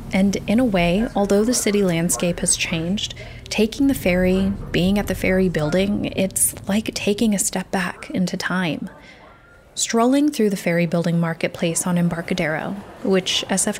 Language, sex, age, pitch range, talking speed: English, female, 20-39, 170-200 Hz, 155 wpm